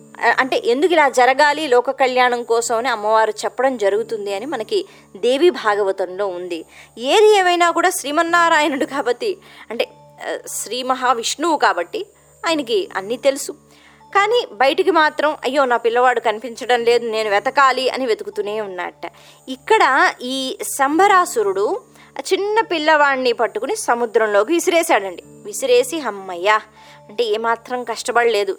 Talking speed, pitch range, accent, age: 115 wpm, 230-355 Hz, native, 20-39